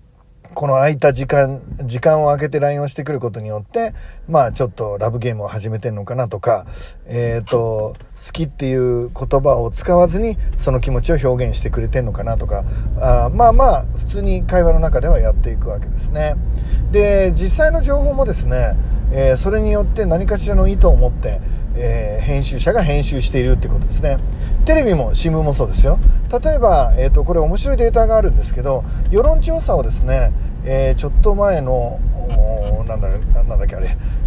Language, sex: Japanese, male